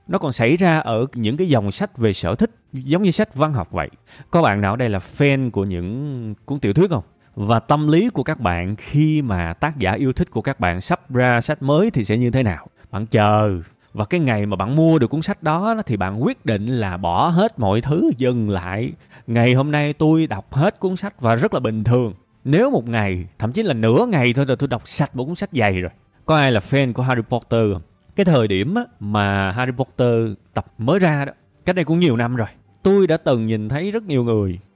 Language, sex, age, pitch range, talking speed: Vietnamese, male, 20-39, 105-150 Hz, 240 wpm